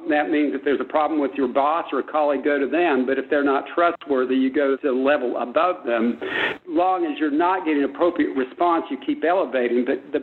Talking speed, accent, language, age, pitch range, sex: 235 wpm, American, English, 60-79, 130-170 Hz, male